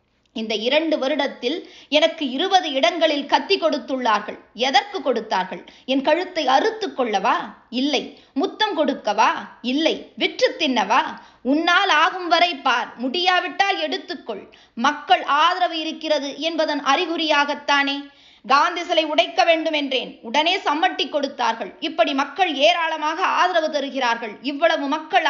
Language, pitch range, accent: Tamil, 275-335 Hz, native